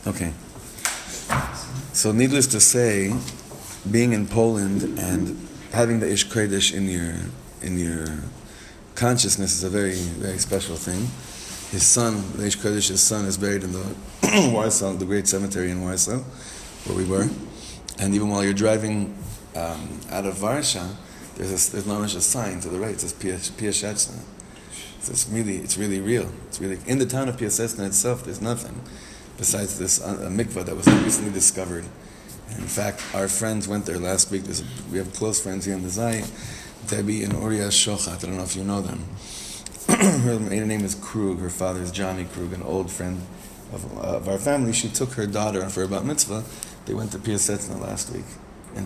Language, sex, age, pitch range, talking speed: English, male, 30-49, 95-110 Hz, 170 wpm